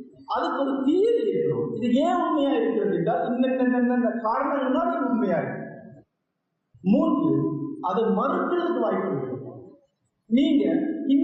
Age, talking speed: 50-69, 60 wpm